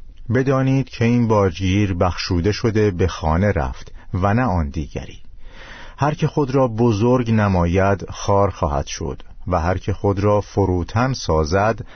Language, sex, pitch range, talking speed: Persian, male, 90-115 Hz, 145 wpm